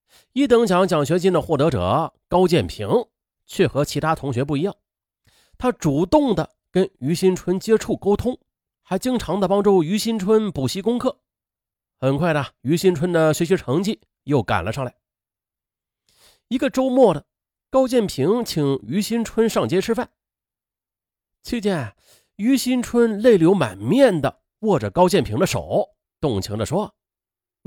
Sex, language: male, Chinese